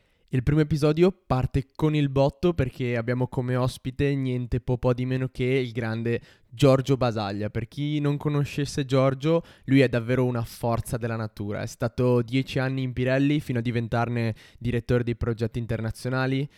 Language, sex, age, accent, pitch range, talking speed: Italian, male, 20-39, native, 120-140 Hz, 165 wpm